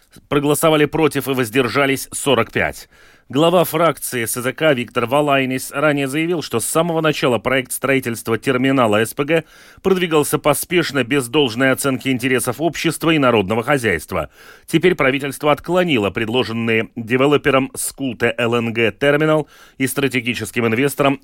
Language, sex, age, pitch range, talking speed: Russian, male, 30-49, 125-155 Hz, 115 wpm